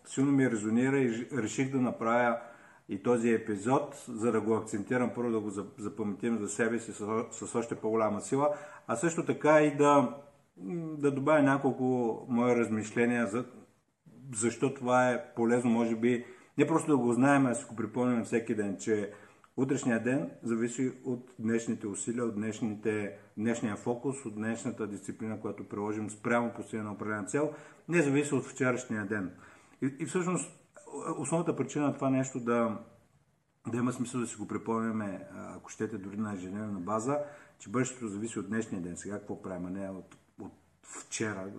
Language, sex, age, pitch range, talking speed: Bulgarian, male, 50-69, 110-130 Hz, 160 wpm